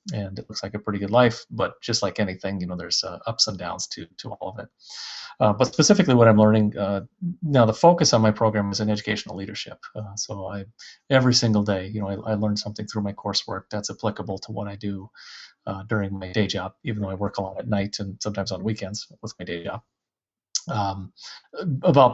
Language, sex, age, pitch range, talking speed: English, male, 30-49, 100-115 Hz, 230 wpm